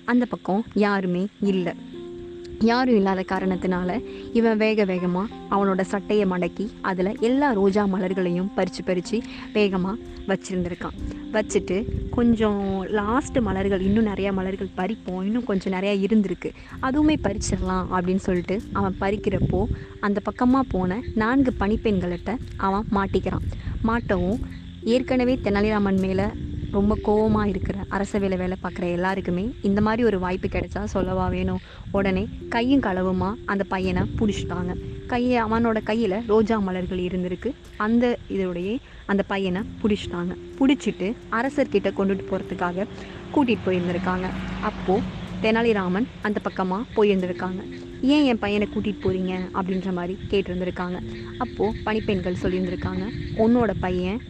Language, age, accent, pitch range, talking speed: Tamil, 20-39, native, 185-215 Hz, 115 wpm